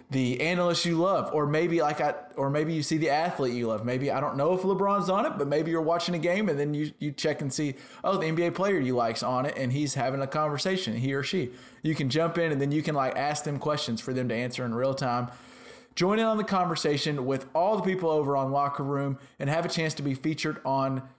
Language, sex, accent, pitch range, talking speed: English, male, American, 135-175 Hz, 265 wpm